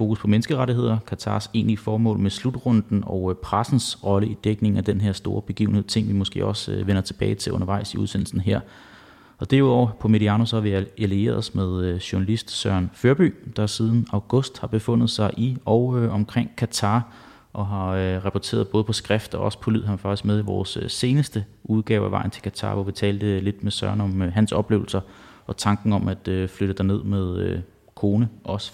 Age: 30-49